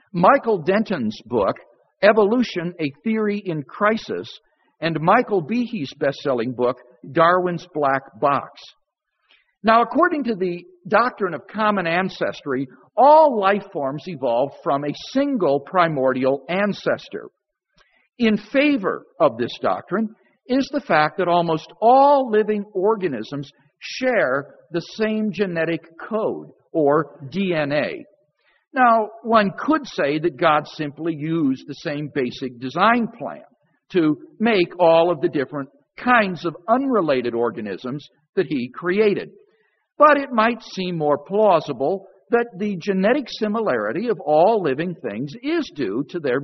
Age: 50-69